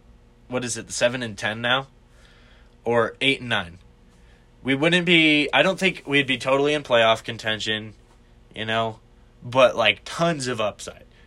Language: English